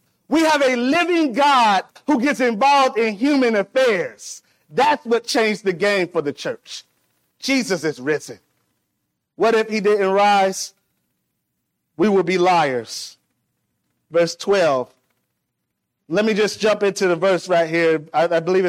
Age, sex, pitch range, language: 30-49, male, 170-230 Hz, English